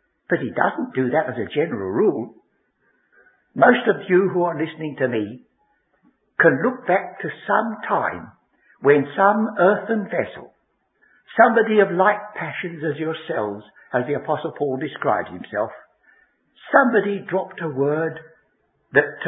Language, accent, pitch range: English, British, 135-205 Hz